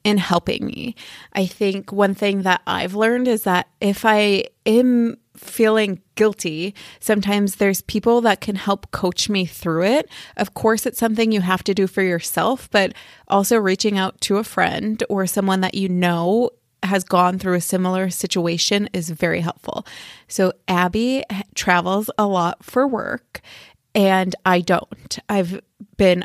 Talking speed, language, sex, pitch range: 160 wpm, English, female, 180-215 Hz